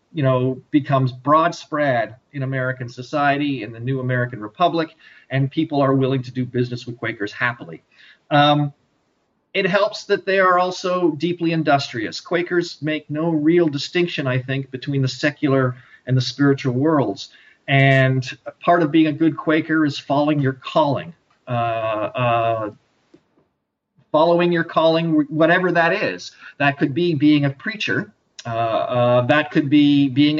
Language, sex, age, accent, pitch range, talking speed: English, male, 40-59, American, 125-160 Hz, 150 wpm